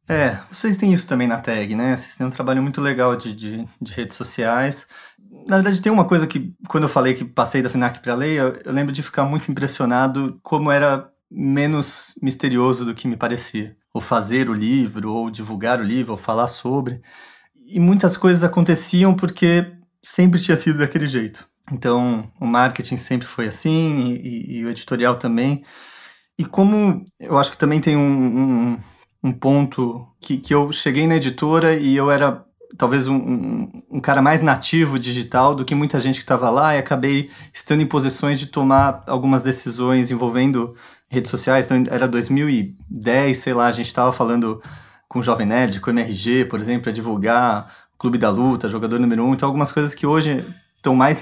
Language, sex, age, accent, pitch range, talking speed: Portuguese, male, 30-49, Brazilian, 120-150 Hz, 190 wpm